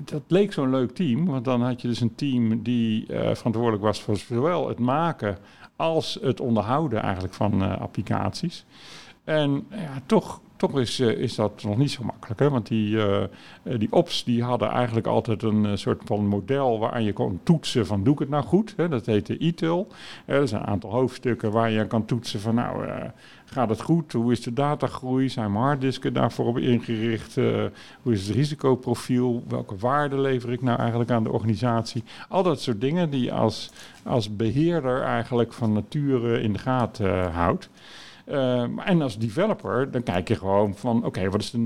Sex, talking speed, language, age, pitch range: male, 190 wpm, Dutch, 50-69, 110-140 Hz